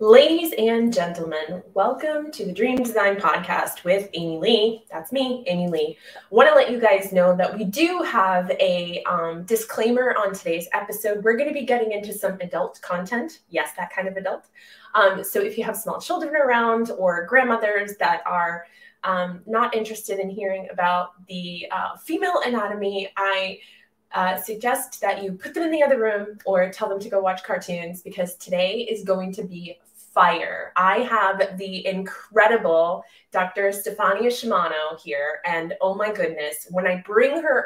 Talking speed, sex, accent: 175 wpm, female, American